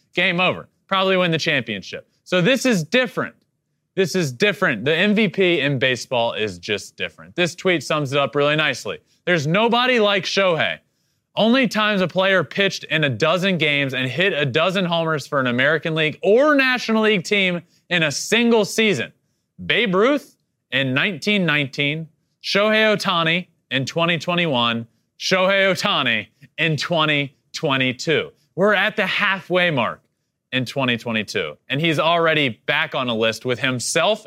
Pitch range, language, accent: 140-205 Hz, English, American